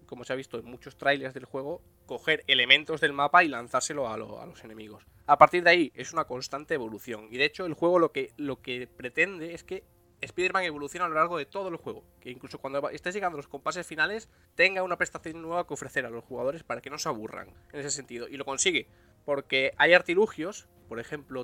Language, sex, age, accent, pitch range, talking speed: English, male, 20-39, Spanish, 120-155 Hz, 230 wpm